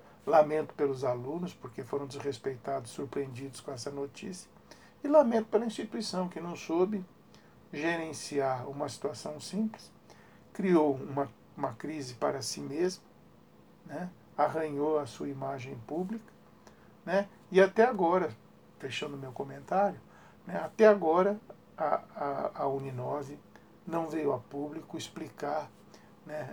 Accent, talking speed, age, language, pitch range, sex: Brazilian, 125 wpm, 60-79, Portuguese, 135-190 Hz, male